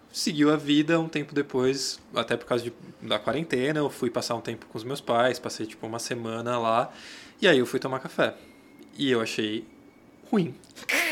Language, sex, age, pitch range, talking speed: Portuguese, male, 20-39, 115-135 Hz, 190 wpm